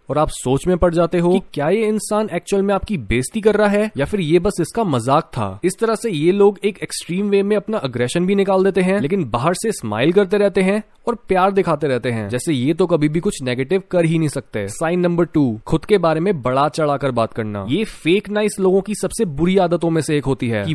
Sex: male